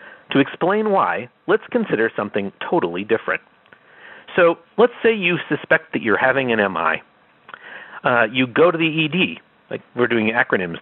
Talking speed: 150 wpm